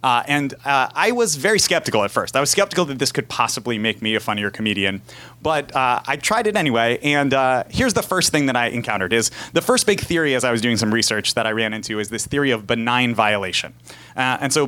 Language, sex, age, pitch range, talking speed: English, male, 30-49, 120-160 Hz, 245 wpm